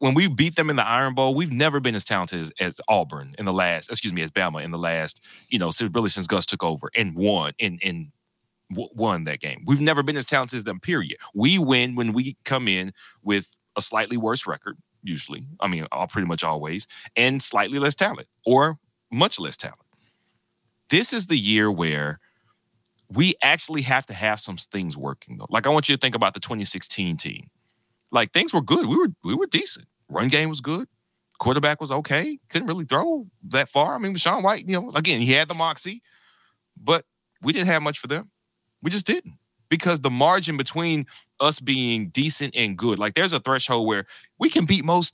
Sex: male